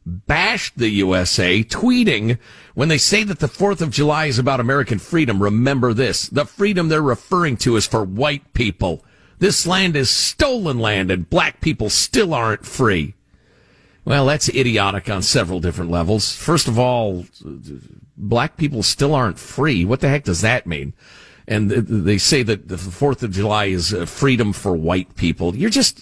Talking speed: 170 wpm